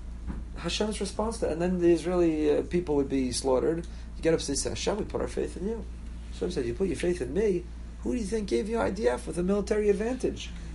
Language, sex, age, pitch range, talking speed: English, male, 40-59, 140-210 Hz, 245 wpm